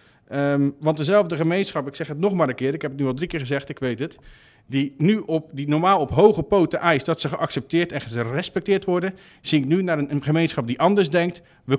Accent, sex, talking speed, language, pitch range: Dutch, male, 245 wpm, Dutch, 130-180 Hz